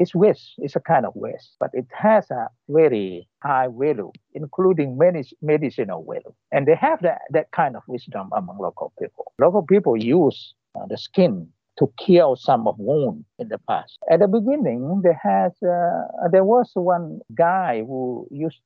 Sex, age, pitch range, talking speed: male, 50-69, 125-190 Hz, 180 wpm